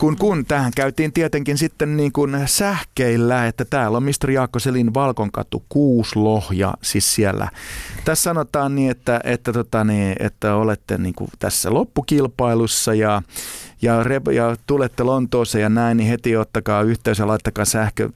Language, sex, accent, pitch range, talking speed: Finnish, male, native, 105-125 Hz, 150 wpm